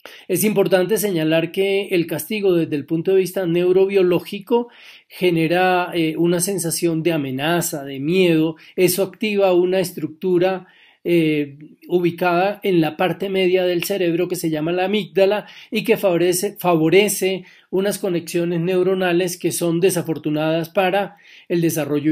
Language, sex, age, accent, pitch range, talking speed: Spanish, male, 40-59, Colombian, 155-185 Hz, 135 wpm